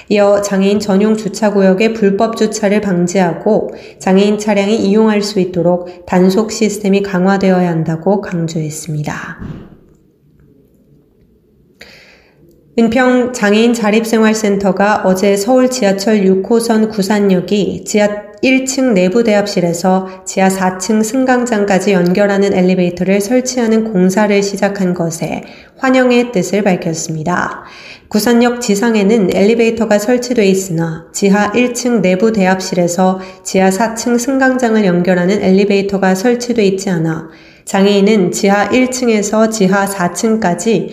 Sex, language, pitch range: female, Korean, 185-220 Hz